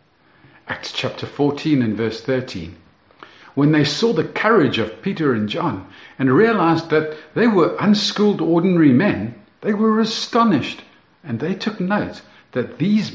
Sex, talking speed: male, 145 wpm